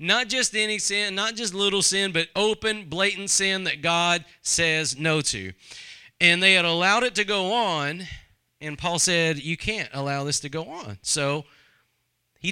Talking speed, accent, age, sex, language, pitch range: 175 wpm, American, 40-59, male, English, 150-195 Hz